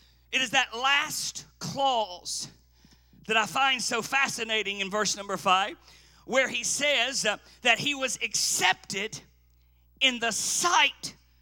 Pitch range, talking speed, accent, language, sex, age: 195-290 Hz, 125 wpm, American, English, male, 50-69